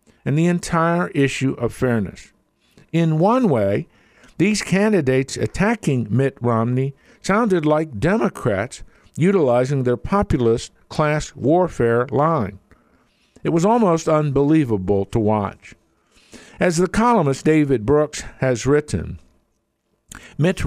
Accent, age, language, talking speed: American, 60-79, English, 105 wpm